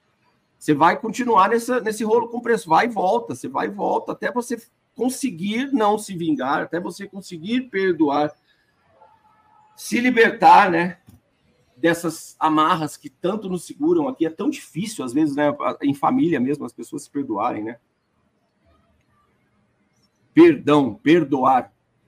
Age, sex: 50-69, male